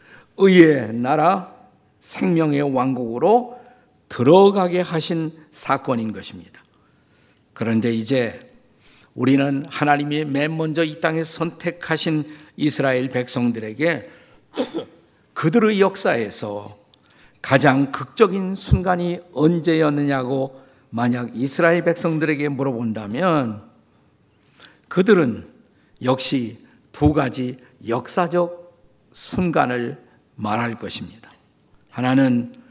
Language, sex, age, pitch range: Korean, male, 50-69, 130-170 Hz